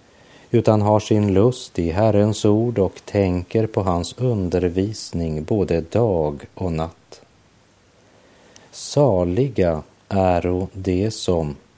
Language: Swedish